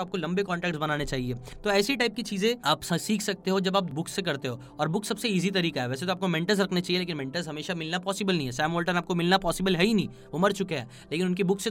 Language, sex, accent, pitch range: Hindi, male, native, 165-200 Hz